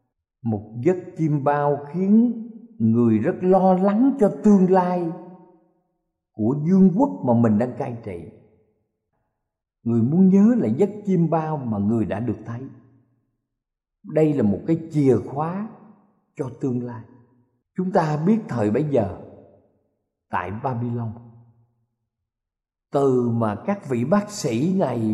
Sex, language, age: male, Thai, 50-69